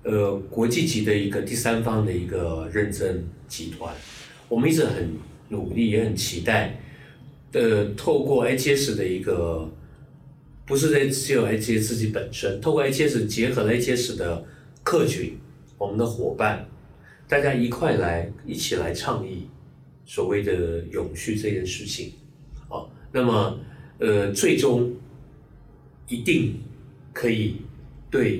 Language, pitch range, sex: Chinese, 105-130 Hz, male